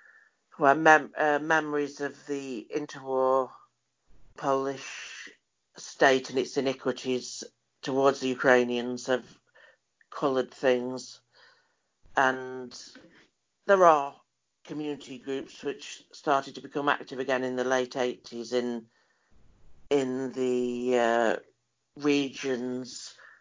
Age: 60-79